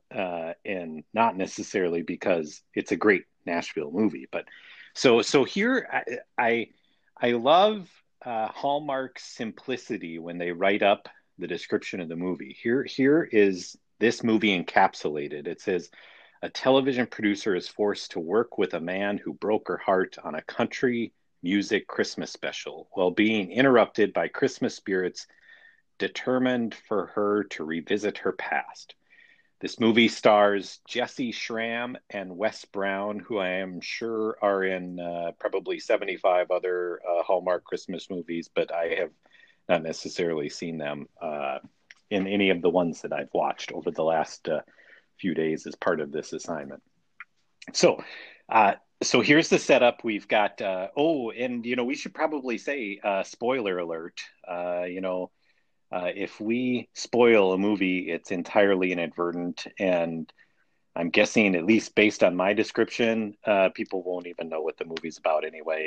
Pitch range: 90-115 Hz